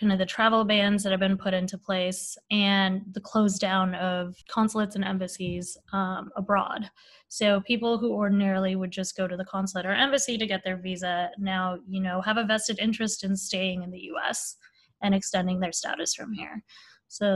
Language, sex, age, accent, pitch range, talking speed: English, female, 20-39, American, 195-230 Hz, 195 wpm